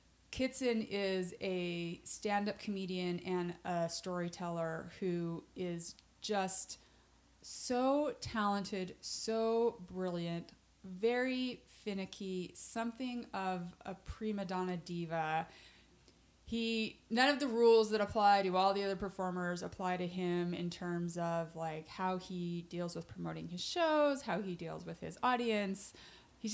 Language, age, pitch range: English, 30-49, 180-215 Hz